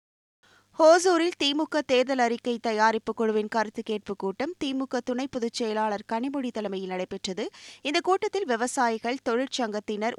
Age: 20-39